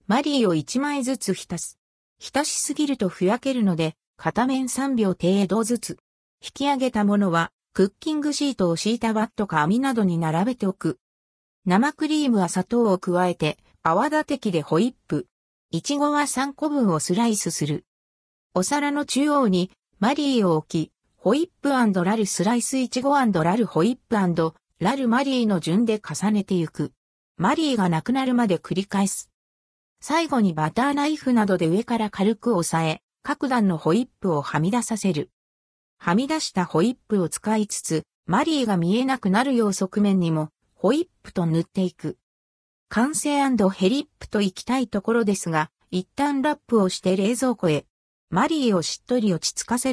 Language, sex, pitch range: Japanese, female, 170-255 Hz